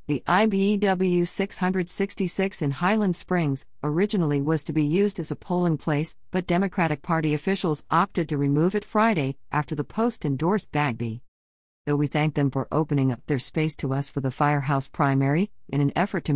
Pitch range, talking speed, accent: 140-175 Hz, 170 wpm, American